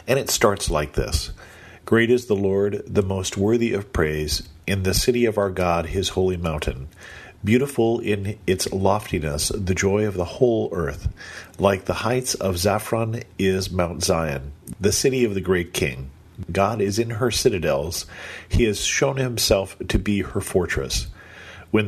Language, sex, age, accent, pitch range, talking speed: English, male, 40-59, American, 85-105 Hz, 165 wpm